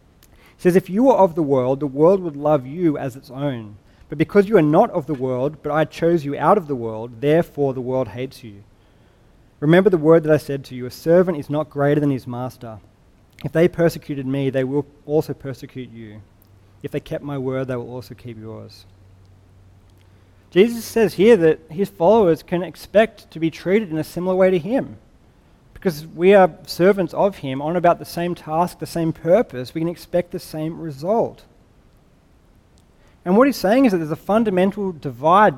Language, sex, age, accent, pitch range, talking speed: English, male, 30-49, Australian, 130-175 Hz, 200 wpm